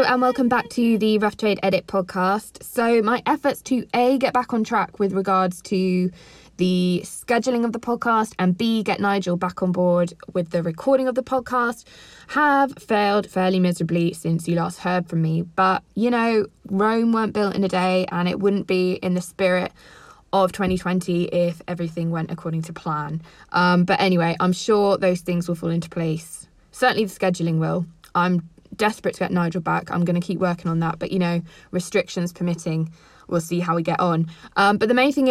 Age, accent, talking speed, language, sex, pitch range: 20-39, British, 200 wpm, English, female, 175-210 Hz